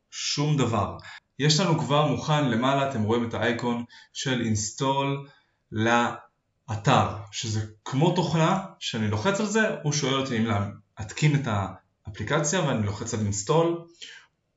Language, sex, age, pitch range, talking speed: Hebrew, male, 20-39, 115-155 Hz, 135 wpm